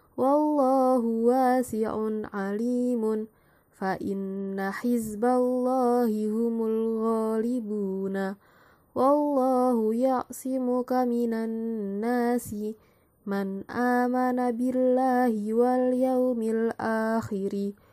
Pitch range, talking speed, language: 215-250 Hz, 60 wpm, Indonesian